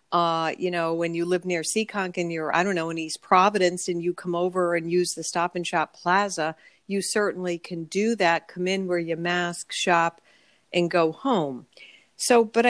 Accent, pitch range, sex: American, 170-200 Hz, female